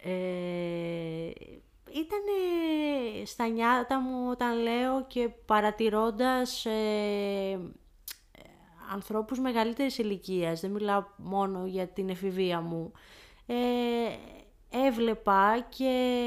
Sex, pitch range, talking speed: female, 185-235 Hz, 85 wpm